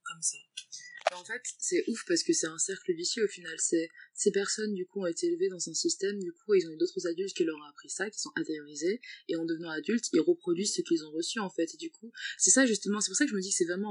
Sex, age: female, 20-39